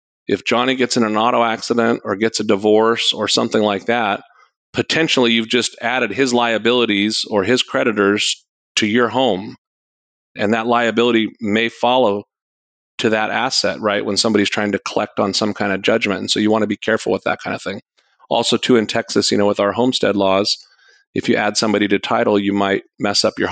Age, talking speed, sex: 40-59, 200 wpm, male